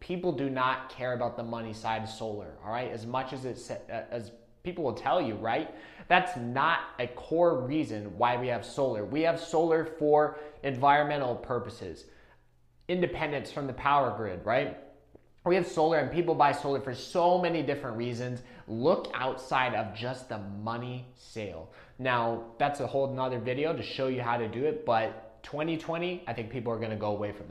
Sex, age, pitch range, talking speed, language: male, 20-39, 120-155 Hz, 190 wpm, English